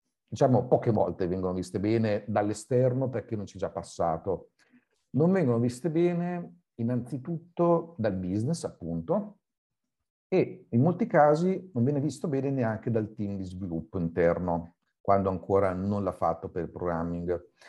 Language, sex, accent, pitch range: Italian, male, native, 95-125 Hz